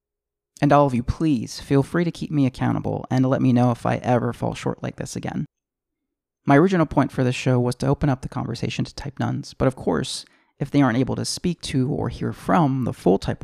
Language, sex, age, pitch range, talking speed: English, male, 30-49, 115-140 Hz, 240 wpm